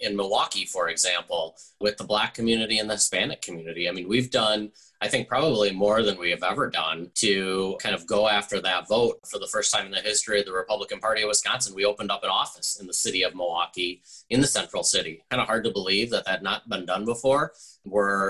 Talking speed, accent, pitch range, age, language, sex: 235 wpm, American, 100-110 Hz, 30-49, English, male